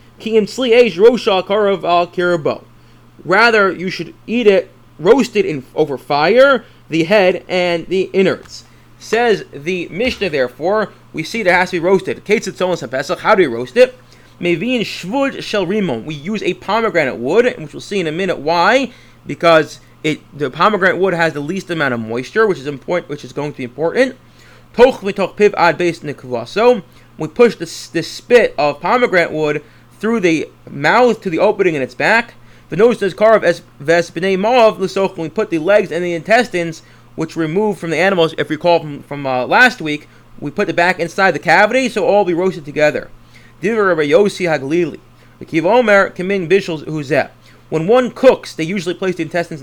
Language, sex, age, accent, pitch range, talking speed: English, male, 30-49, American, 155-205 Hz, 155 wpm